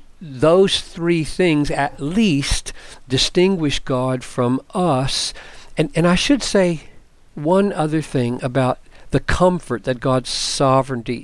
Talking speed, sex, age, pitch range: 125 wpm, male, 50-69, 125-165 Hz